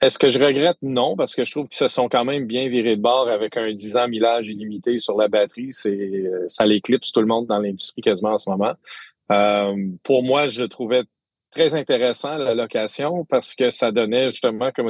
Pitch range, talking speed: 105-125 Hz, 220 wpm